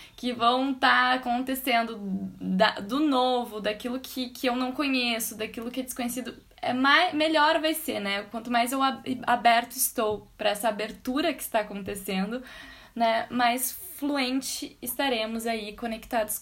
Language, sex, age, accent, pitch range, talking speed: Portuguese, female, 10-29, Brazilian, 215-290 Hz, 135 wpm